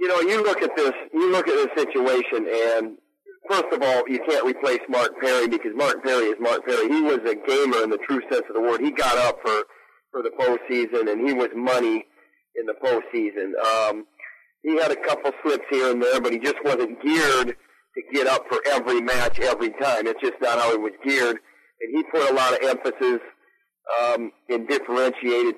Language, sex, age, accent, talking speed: English, male, 40-59, American, 210 wpm